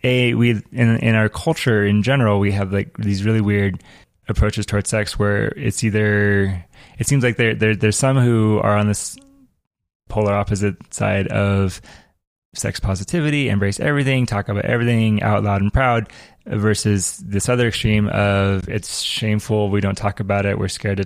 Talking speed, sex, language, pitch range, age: 175 wpm, male, English, 100-110 Hz, 20-39